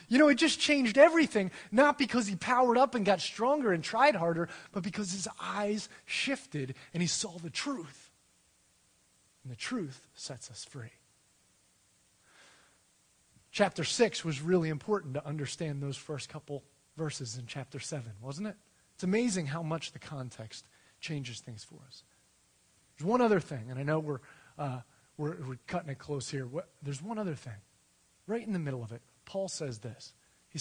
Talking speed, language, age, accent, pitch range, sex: 175 wpm, English, 30-49, American, 130-185 Hz, male